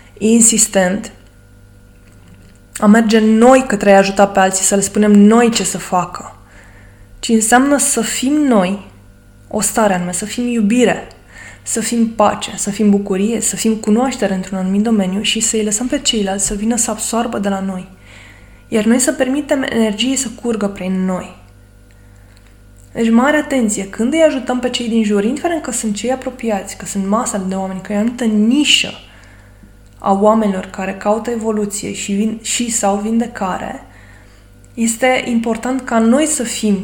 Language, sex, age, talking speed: Romanian, female, 20-39, 165 wpm